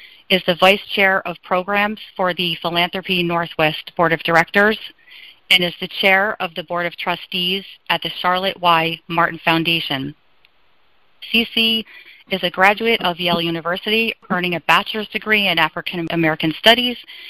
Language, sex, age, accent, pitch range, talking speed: English, female, 30-49, American, 170-200 Hz, 150 wpm